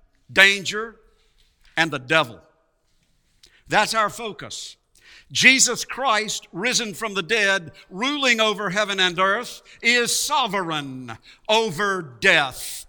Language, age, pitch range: English, 50-69, 150-205 Hz